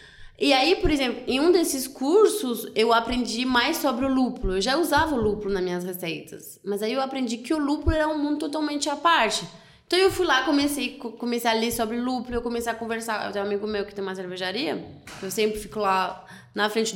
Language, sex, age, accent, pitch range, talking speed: Portuguese, female, 20-39, Brazilian, 210-265 Hz, 225 wpm